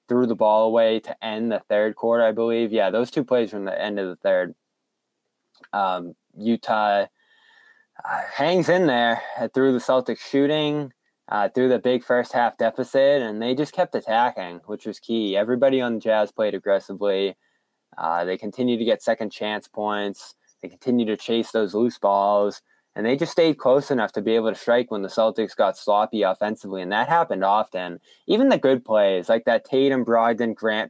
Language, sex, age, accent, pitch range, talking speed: English, male, 20-39, American, 105-130 Hz, 180 wpm